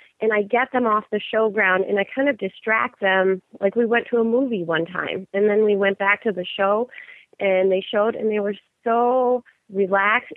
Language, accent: English, American